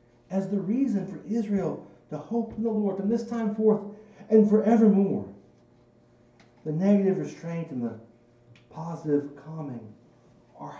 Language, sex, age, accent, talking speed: English, male, 60-79, American, 135 wpm